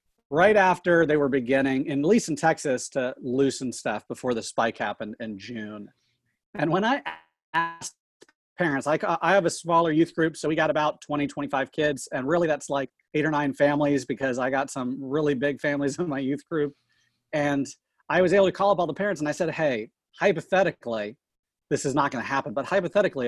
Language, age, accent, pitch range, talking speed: English, 40-59, American, 115-155 Hz, 200 wpm